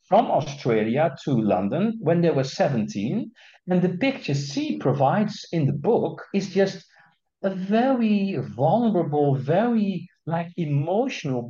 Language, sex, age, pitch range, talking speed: English, male, 50-69, 145-200 Hz, 125 wpm